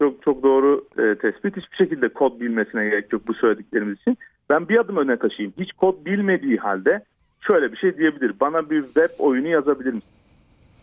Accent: native